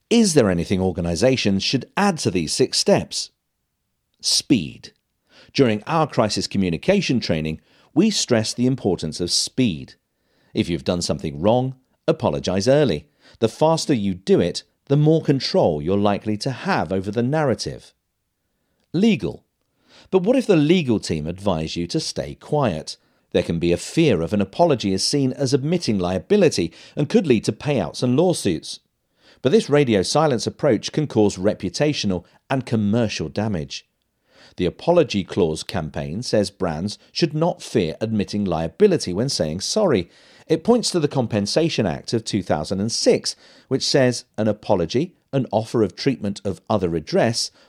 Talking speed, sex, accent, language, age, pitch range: 150 wpm, male, British, English, 50-69, 95-150 Hz